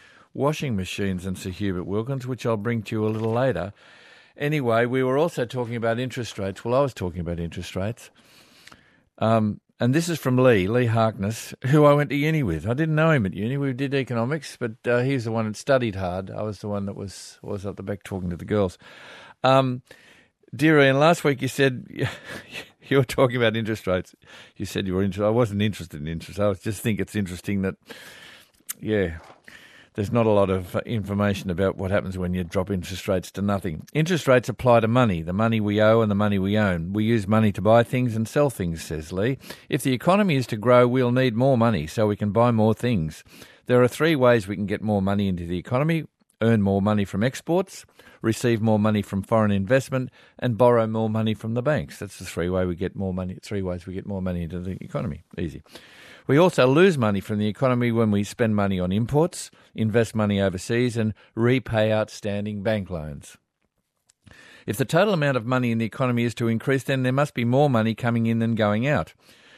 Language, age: English, 50-69